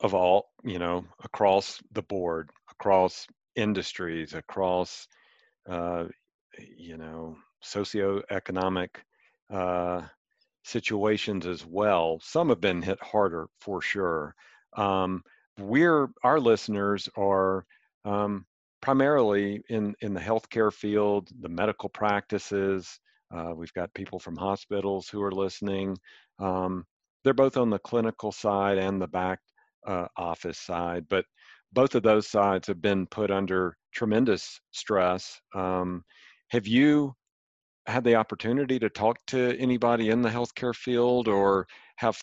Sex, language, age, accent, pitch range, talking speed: male, English, 50-69, American, 95-110 Hz, 125 wpm